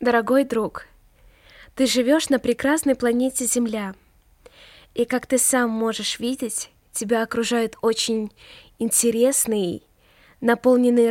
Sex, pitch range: female, 220-260 Hz